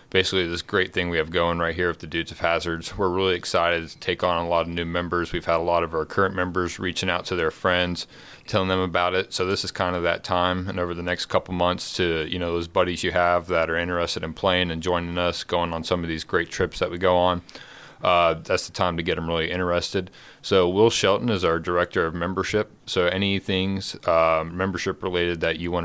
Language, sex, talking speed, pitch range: English, male, 245 wpm, 85-95 Hz